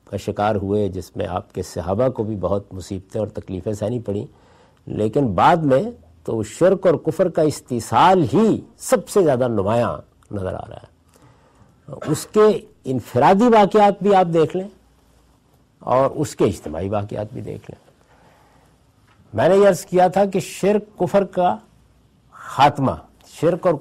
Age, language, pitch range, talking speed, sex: 50-69, Urdu, 105-170 Hz, 160 wpm, male